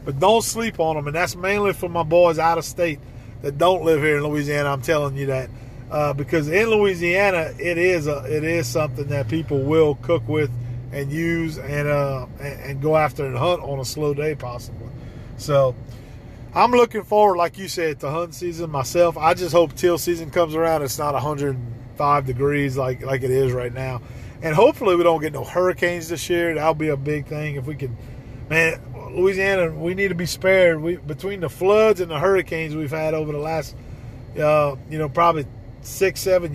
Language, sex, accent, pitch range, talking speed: English, male, American, 135-170 Hz, 205 wpm